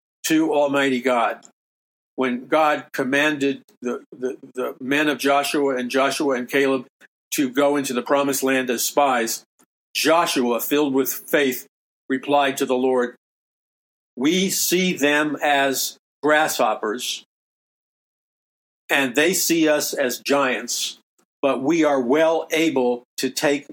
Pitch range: 125-145 Hz